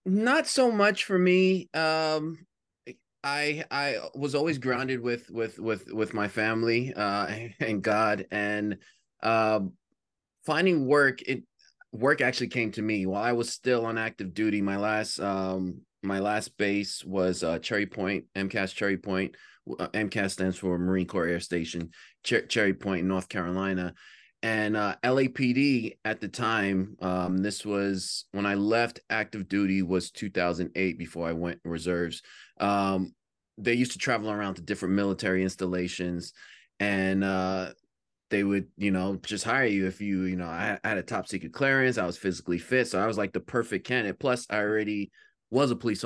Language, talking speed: English, 165 wpm